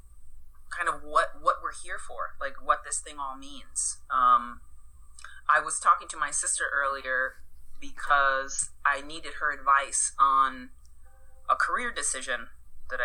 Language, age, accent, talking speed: English, 30-49, American, 145 wpm